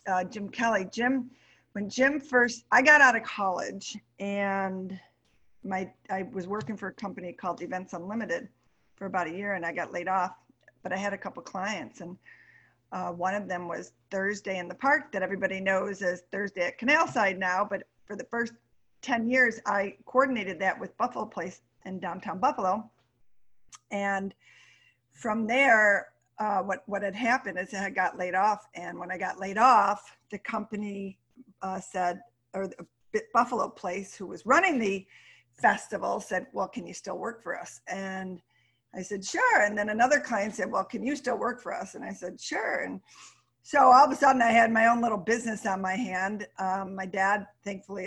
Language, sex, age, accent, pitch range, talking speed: English, female, 50-69, American, 185-230 Hz, 185 wpm